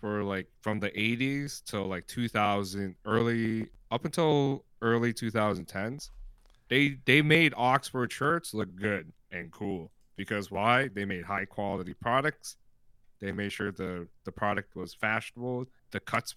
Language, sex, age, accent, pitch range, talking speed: English, male, 30-49, American, 100-130 Hz, 140 wpm